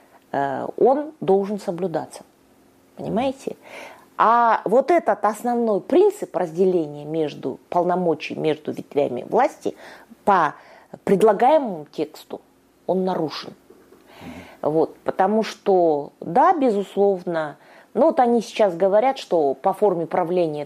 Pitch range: 170-275 Hz